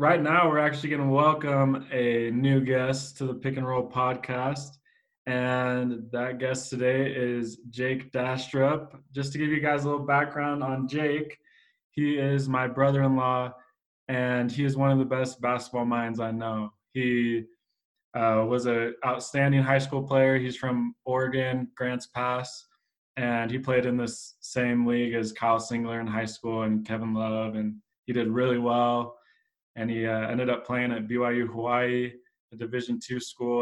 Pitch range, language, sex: 115-130 Hz, English, male